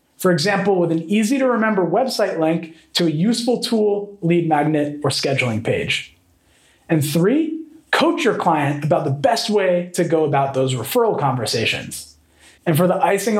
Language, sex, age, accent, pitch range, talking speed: English, male, 30-49, American, 150-230 Hz, 155 wpm